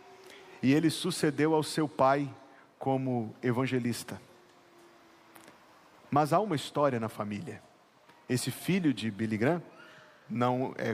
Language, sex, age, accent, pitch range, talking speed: Portuguese, male, 40-59, Brazilian, 130-170 Hz, 115 wpm